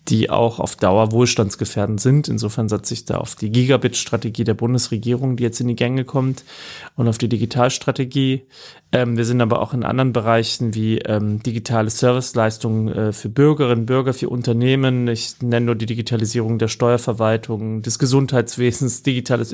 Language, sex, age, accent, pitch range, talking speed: German, male, 30-49, German, 115-130 Hz, 160 wpm